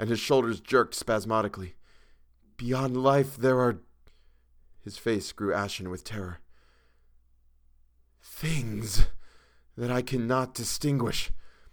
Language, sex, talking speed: English, male, 100 wpm